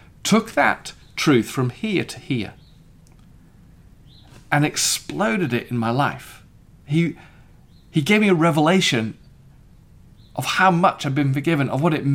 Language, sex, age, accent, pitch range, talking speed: English, male, 40-59, British, 135-190 Hz, 140 wpm